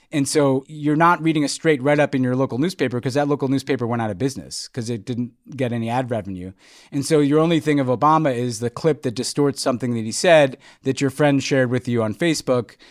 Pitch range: 120-145 Hz